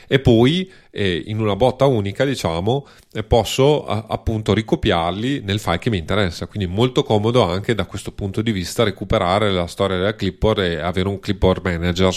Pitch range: 95-115 Hz